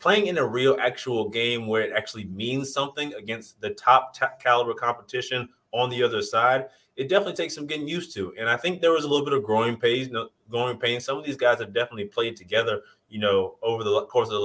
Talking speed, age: 225 wpm, 20-39